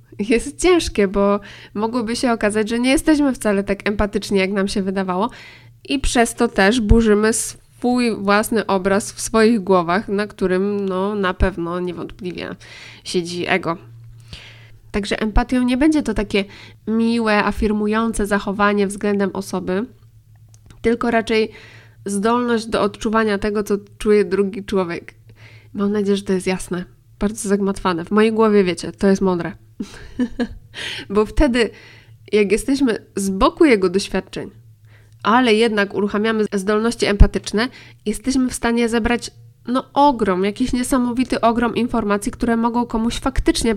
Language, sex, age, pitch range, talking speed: Polish, female, 20-39, 180-225 Hz, 135 wpm